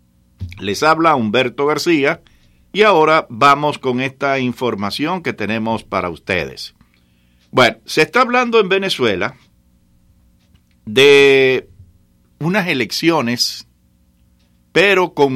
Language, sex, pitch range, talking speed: English, male, 95-160 Hz, 100 wpm